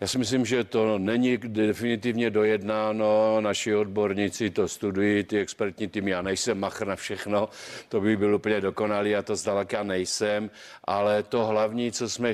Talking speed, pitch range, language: 165 wpm, 100-110 Hz, Czech